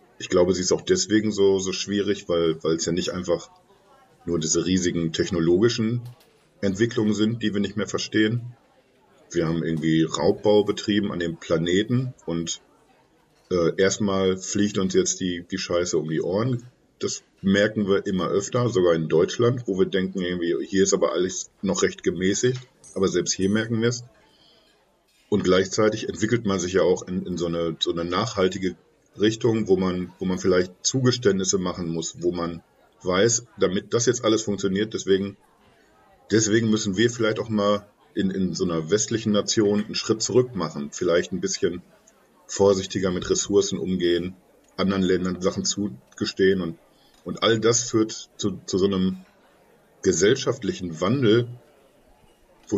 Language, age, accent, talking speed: German, 50-69, German, 160 wpm